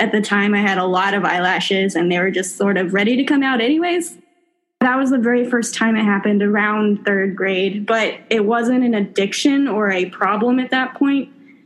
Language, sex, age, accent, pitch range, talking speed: English, female, 10-29, American, 195-240 Hz, 215 wpm